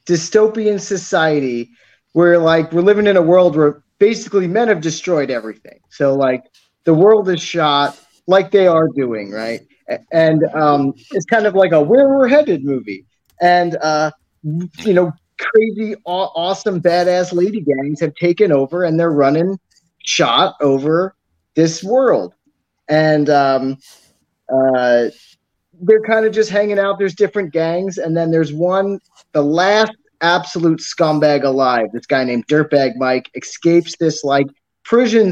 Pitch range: 150-195 Hz